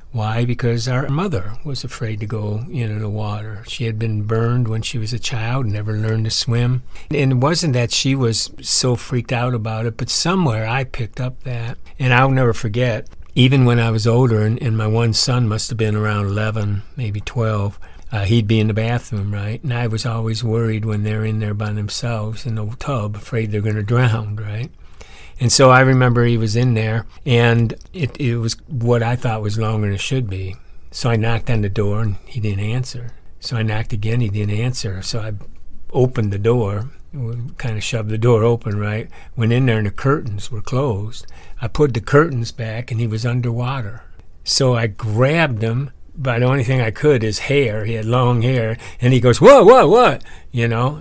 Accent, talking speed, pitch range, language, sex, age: American, 210 wpm, 110-125 Hz, English, male, 60-79